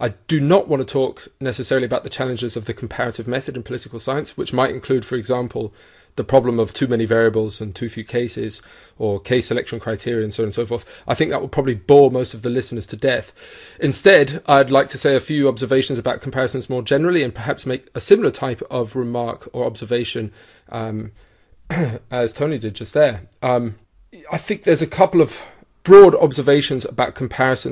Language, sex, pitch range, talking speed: English, male, 115-140 Hz, 200 wpm